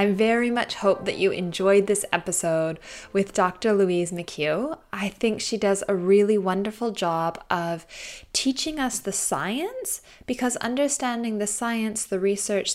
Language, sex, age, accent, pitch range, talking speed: English, female, 10-29, American, 185-235 Hz, 150 wpm